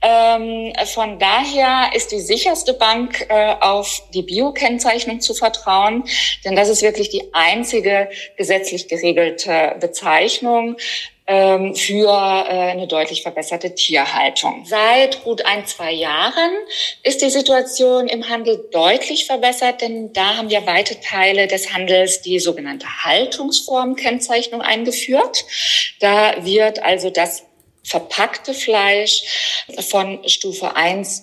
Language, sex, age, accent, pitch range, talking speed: German, female, 50-69, German, 180-255 Hz, 120 wpm